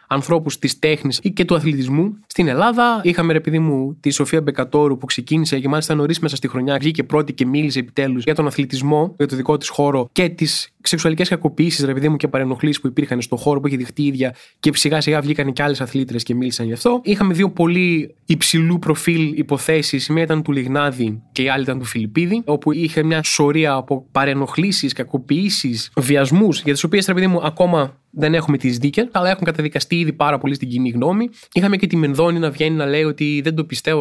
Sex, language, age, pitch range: male, Greek, 20-39, 140-185 Hz